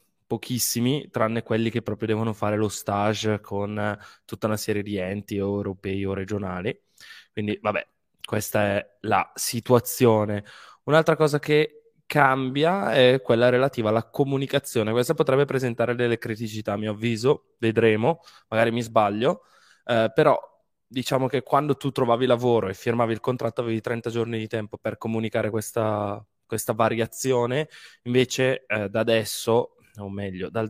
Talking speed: 145 wpm